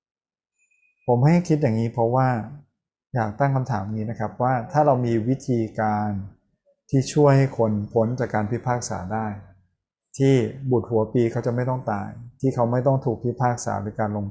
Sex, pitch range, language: male, 105-130 Hz, Thai